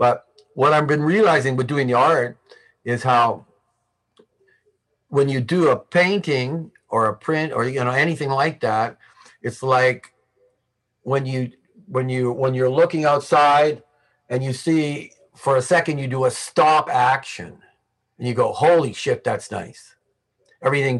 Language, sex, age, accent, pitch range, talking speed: English, male, 50-69, American, 125-175 Hz, 155 wpm